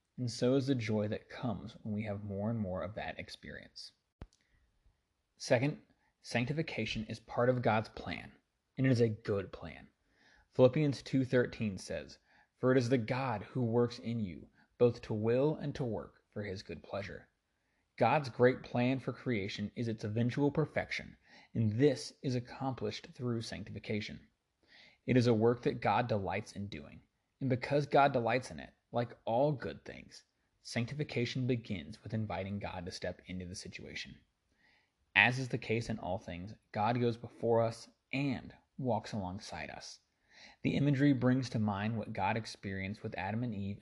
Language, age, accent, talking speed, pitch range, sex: English, 30-49, American, 165 wpm, 100-125 Hz, male